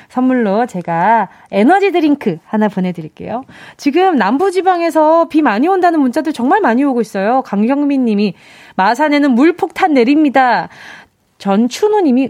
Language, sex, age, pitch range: Korean, female, 20-39, 225-330 Hz